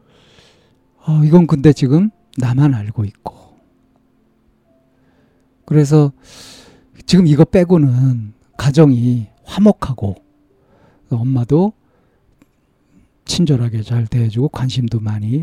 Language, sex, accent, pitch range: Korean, male, native, 110-160 Hz